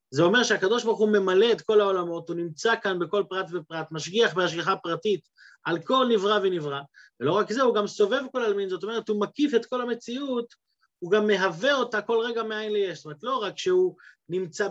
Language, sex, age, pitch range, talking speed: Hebrew, male, 30-49, 165-245 Hz, 210 wpm